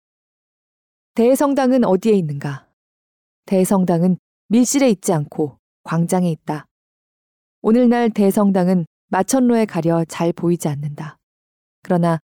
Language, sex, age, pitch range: Korean, female, 20-39, 160-230 Hz